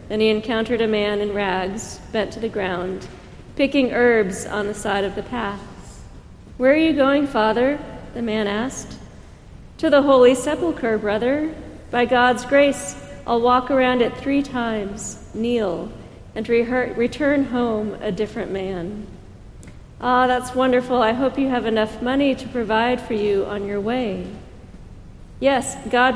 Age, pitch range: 40-59, 210-250 Hz